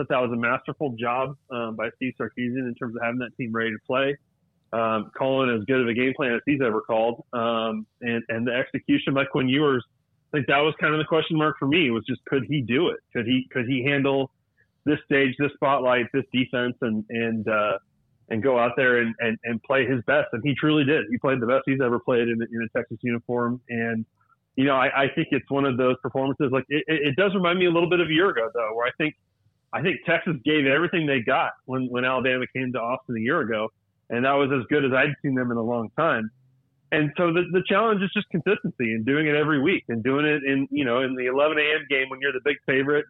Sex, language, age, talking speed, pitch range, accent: male, English, 30-49, 250 wpm, 120-145 Hz, American